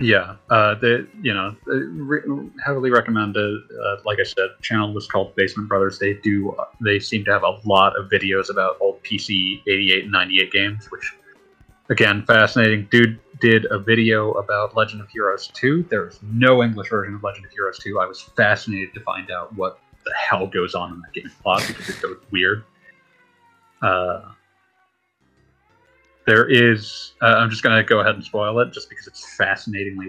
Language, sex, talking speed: English, male, 185 wpm